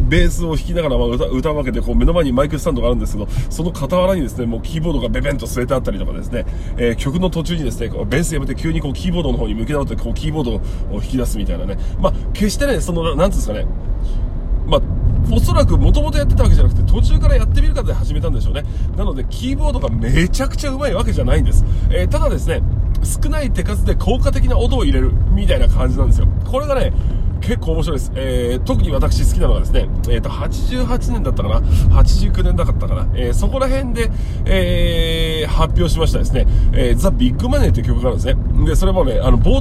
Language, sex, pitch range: Japanese, male, 90-120 Hz